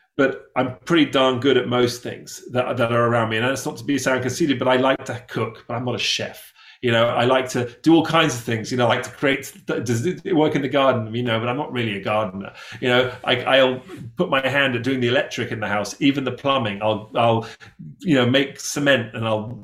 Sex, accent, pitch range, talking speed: male, British, 120-145 Hz, 260 wpm